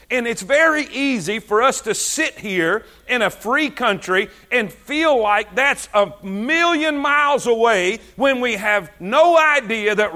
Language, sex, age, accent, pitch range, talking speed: English, male, 50-69, American, 205-300 Hz, 160 wpm